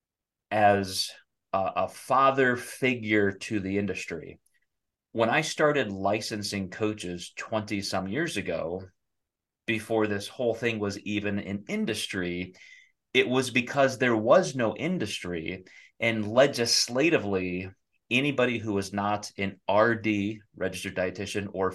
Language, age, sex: English, 30-49, male